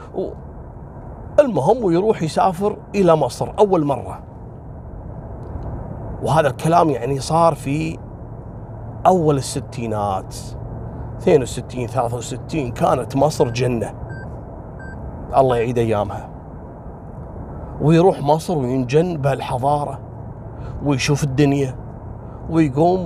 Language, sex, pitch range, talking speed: Arabic, male, 120-190 Hz, 80 wpm